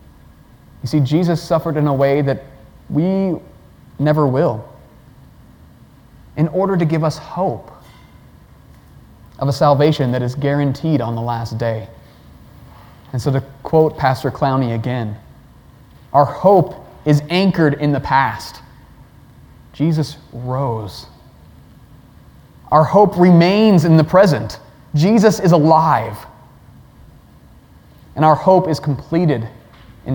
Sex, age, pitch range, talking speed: male, 30-49, 120-160 Hz, 115 wpm